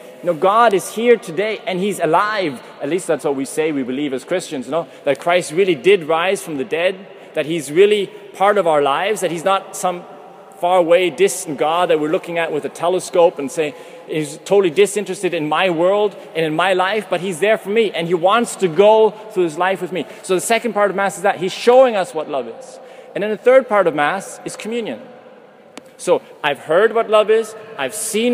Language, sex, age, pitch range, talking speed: English, male, 30-49, 165-210 Hz, 230 wpm